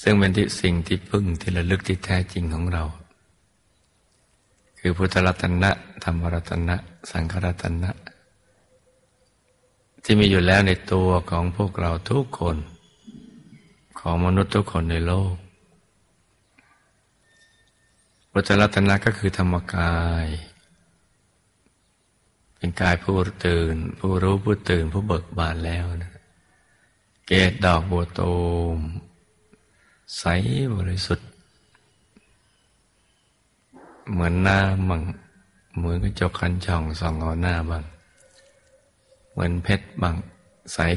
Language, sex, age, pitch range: Thai, male, 60-79, 85-95 Hz